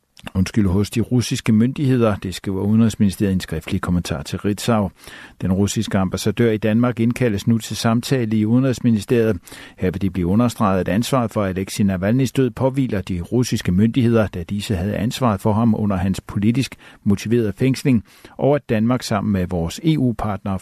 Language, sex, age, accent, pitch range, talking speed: Danish, male, 60-79, native, 95-120 Hz, 165 wpm